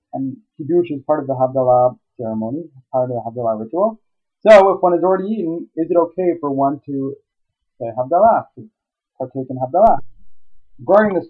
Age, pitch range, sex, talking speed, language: 30-49, 130-170 Hz, male, 175 wpm, English